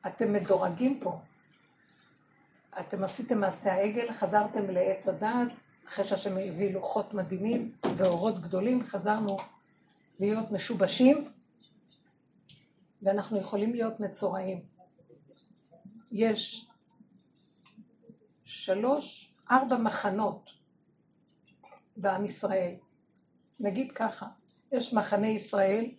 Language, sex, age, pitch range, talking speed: Hebrew, female, 50-69, 195-245 Hz, 80 wpm